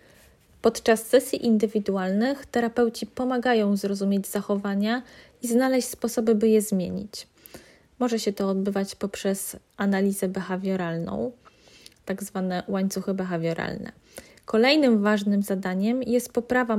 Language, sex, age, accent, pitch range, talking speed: Polish, female, 20-39, native, 200-230 Hz, 105 wpm